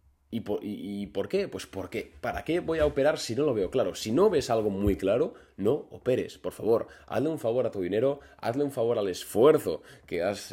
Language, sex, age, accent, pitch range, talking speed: Spanish, male, 20-39, Spanish, 95-125 Hz, 240 wpm